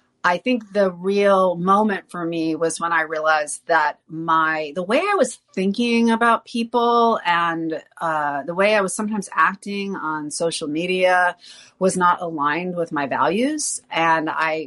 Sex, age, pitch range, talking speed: female, 30-49, 160-215 Hz, 160 wpm